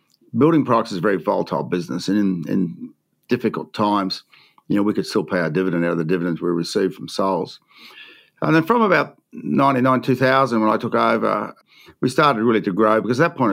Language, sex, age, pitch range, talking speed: English, male, 50-69, 95-120 Hz, 210 wpm